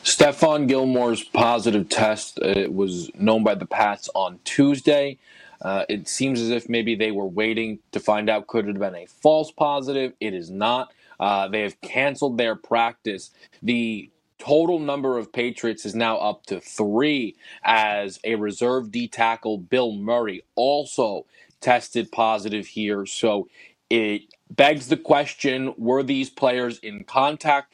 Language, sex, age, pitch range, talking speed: English, male, 20-39, 110-135 Hz, 155 wpm